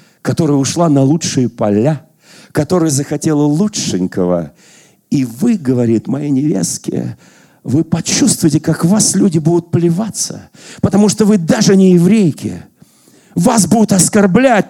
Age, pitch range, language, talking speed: 40-59, 155-215 Hz, Russian, 120 wpm